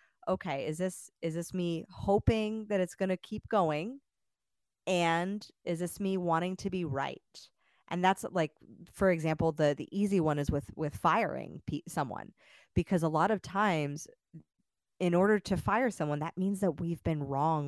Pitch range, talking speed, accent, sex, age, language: 150-180 Hz, 175 wpm, American, female, 20-39, English